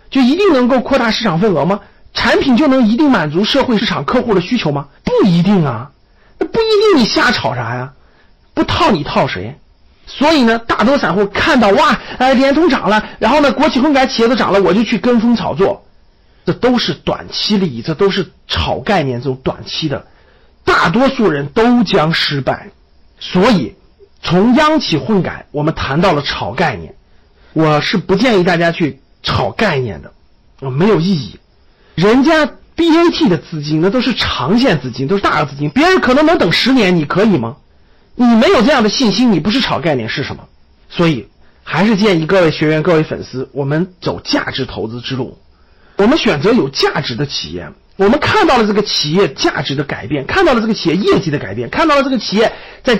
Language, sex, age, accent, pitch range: Chinese, male, 50-69, native, 160-260 Hz